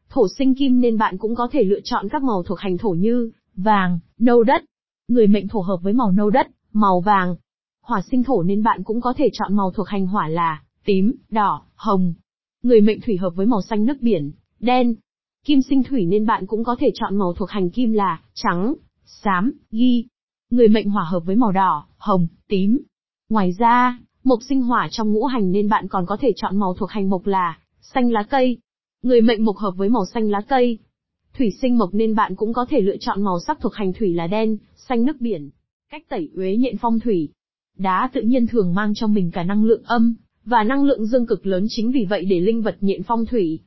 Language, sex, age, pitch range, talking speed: Vietnamese, female, 20-39, 195-245 Hz, 225 wpm